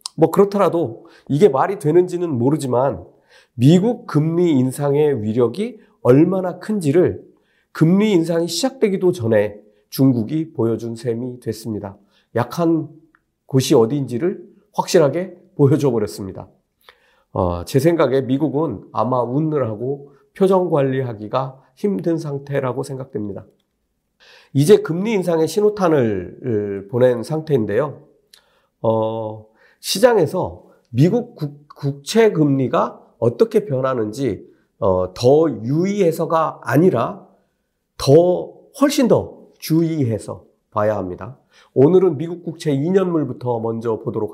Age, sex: 40-59, male